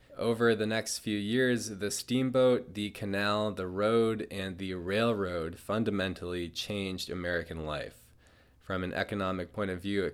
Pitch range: 90-105 Hz